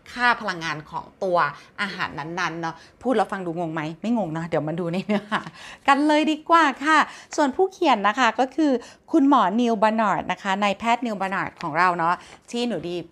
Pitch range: 175-240 Hz